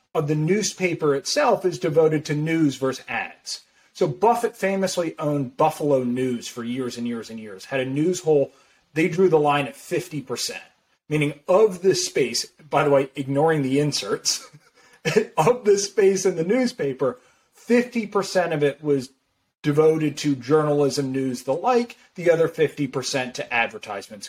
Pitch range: 130-180 Hz